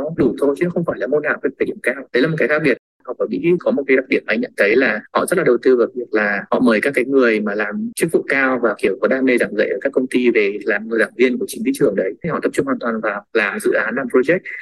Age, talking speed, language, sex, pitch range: 20-39, 330 wpm, Vietnamese, male, 125-175 Hz